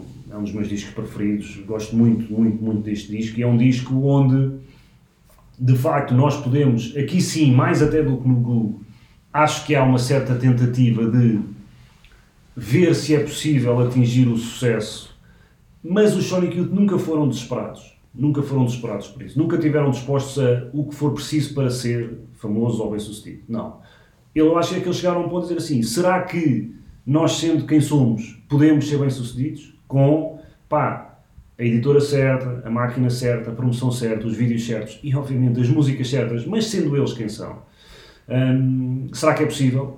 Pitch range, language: 120-155 Hz, English